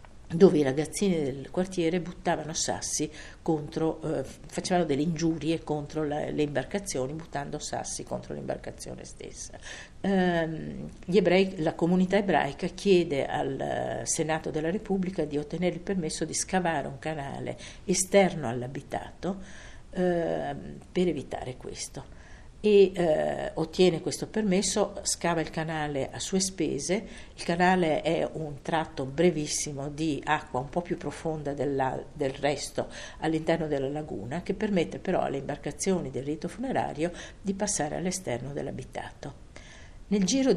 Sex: female